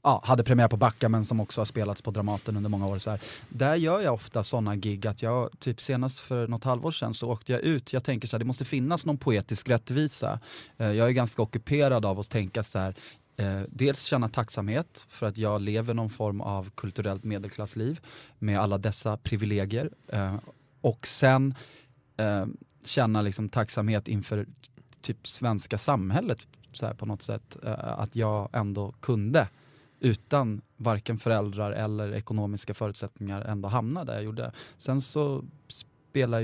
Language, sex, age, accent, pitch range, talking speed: English, male, 20-39, Swedish, 105-130 Hz, 165 wpm